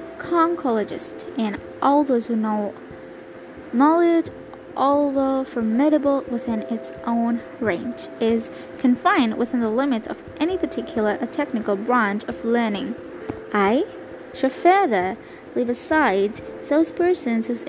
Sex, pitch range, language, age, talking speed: female, 210-305 Hz, English, 10-29, 110 wpm